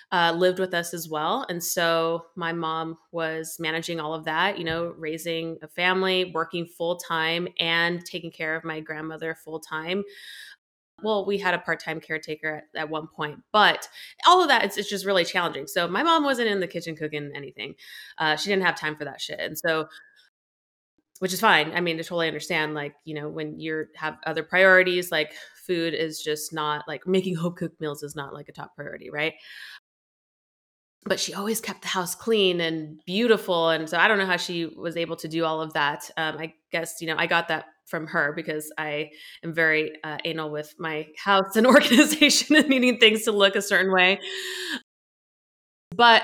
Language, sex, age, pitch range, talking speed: English, female, 20-39, 160-190 Hz, 200 wpm